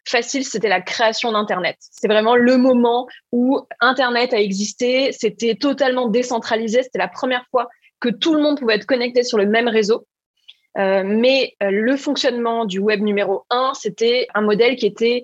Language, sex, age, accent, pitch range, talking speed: French, female, 20-39, French, 210-260 Hz, 175 wpm